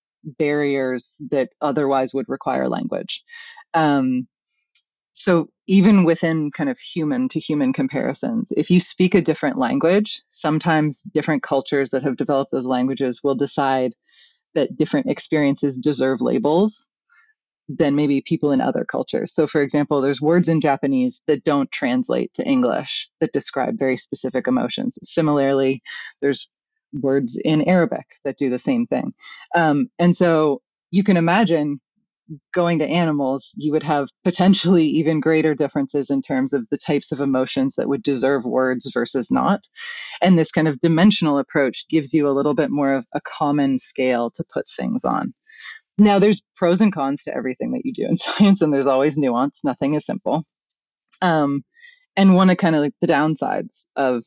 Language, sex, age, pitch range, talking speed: English, female, 30-49, 140-200 Hz, 160 wpm